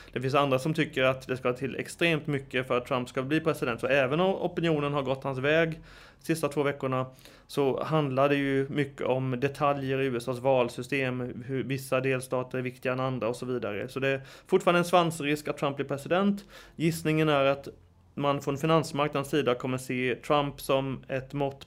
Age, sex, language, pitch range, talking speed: 30-49, male, Swedish, 130-155 Hz, 200 wpm